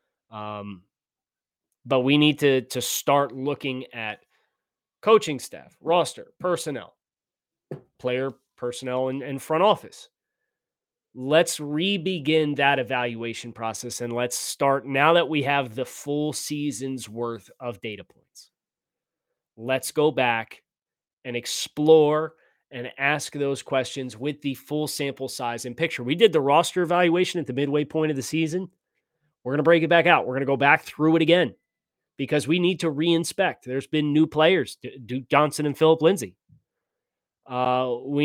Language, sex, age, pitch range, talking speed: English, male, 30-49, 130-160 Hz, 150 wpm